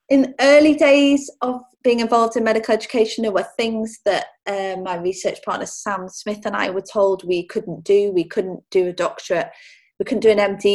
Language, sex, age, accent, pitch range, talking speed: English, female, 30-49, British, 170-215 Hz, 205 wpm